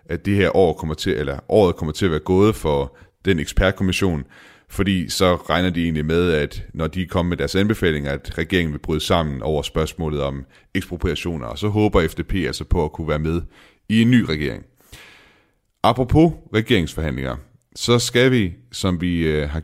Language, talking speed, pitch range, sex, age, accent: Danish, 185 wpm, 80-100 Hz, male, 30-49, native